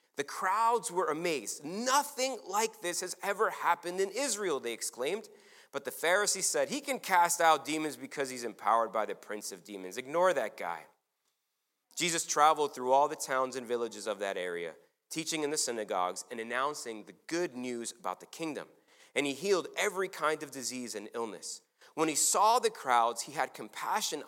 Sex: male